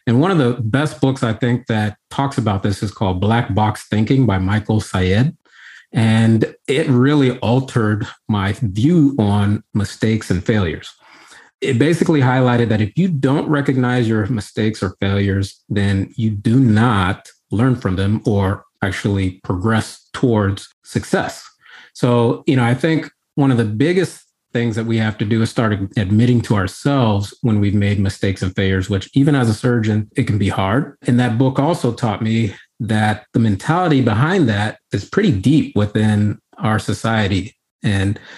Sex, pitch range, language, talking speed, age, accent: male, 105-130 Hz, English, 165 wpm, 40-59, American